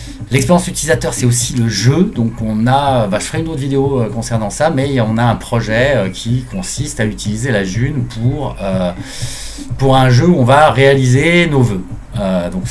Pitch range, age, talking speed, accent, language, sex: 100-130 Hz, 30-49, 195 wpm, French, French, male